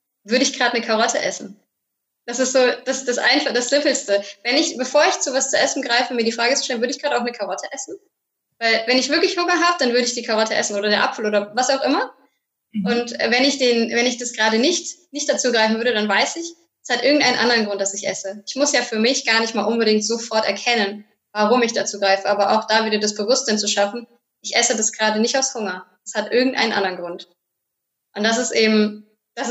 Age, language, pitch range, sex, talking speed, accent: 20-39, German, 210-255 Hz, female, 240 wpm, German